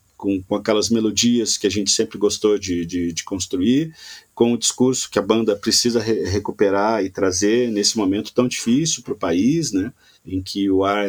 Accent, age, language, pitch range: Brazilian, 40-59, Portuguese, 95-120 Hz